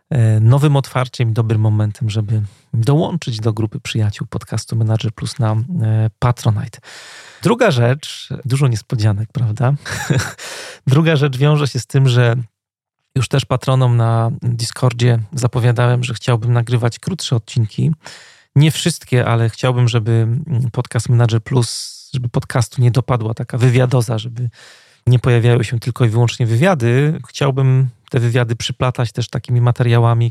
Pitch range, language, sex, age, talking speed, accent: 115-130 Hz, Polish, male, 30-49, 135 wpm, native